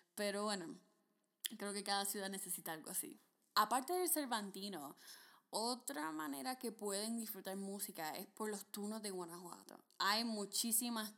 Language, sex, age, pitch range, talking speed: Spanish, female, 10-29, 185-250 Hz, 140 wpm